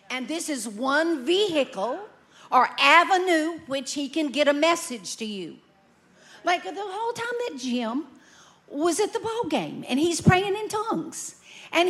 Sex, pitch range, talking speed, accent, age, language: female, 275-355 Hz, 160 wpm, American, 50-69, English